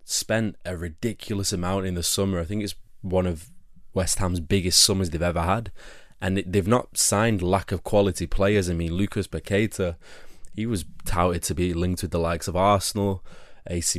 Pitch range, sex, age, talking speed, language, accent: 90-105 Hz, male, 20-39, 185 wpm, English, British